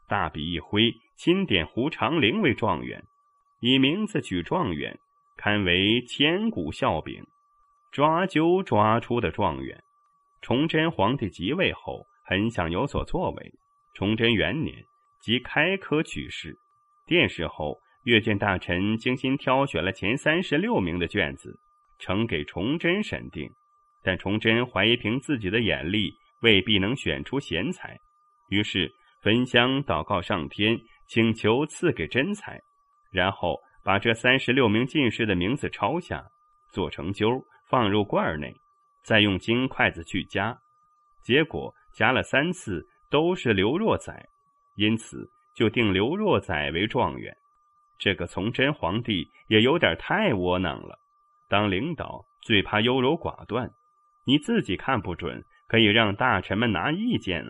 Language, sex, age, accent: Chinese, male, 30-49, native